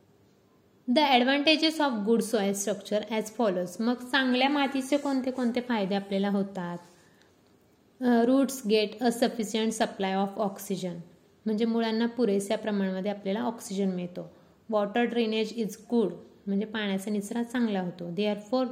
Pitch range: 195-230 Hz